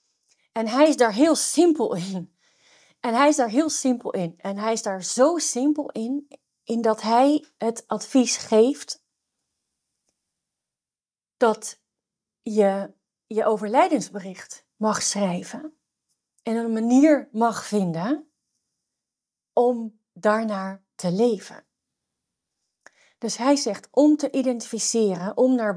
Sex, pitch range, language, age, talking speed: female, 195-255 Hz, Dutch, 40-59, 115 wpm